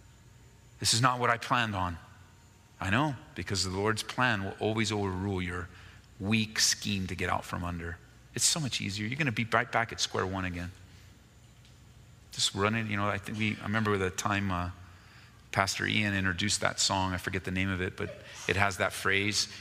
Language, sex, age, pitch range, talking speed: English, male, 30-49, 95-115 Hz, 200 wpm